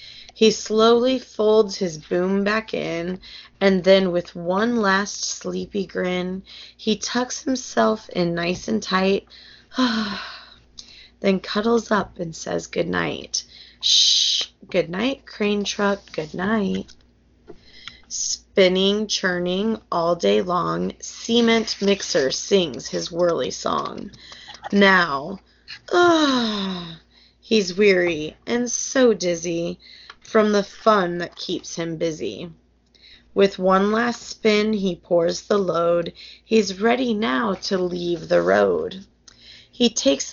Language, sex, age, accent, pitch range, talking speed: English, female, 20-39, American, 175-220 Hz, 115 wpm